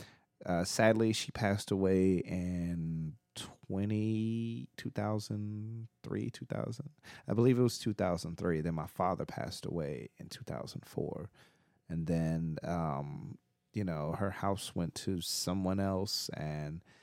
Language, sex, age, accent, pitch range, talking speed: English, male, 30-49, American, 85-105 Hz, 140 wpm